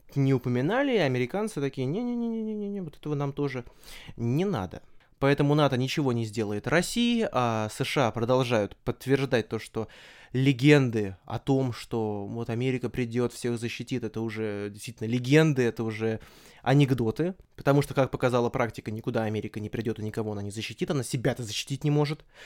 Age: 20-39